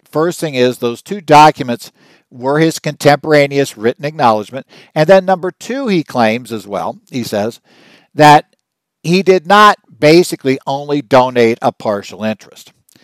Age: 60-79